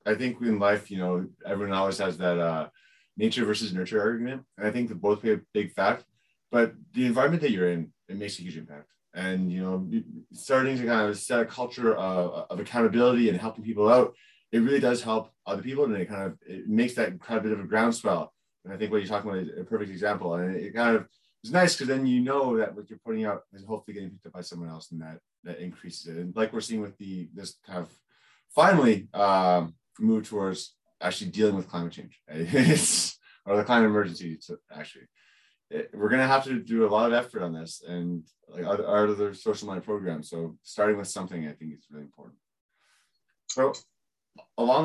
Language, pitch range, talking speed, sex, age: English, 90-120 Hz, 220 wpm, male, 30-49